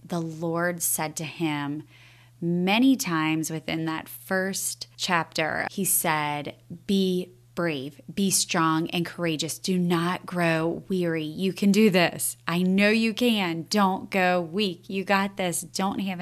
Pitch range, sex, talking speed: 155-185 Hz, female, 145 wpm